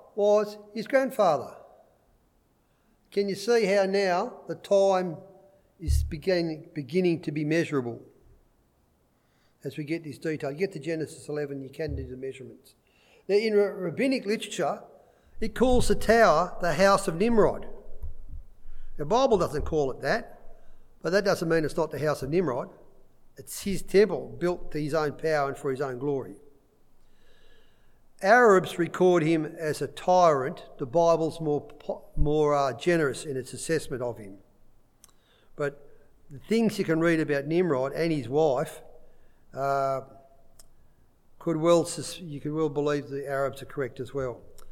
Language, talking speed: English, 150 wpm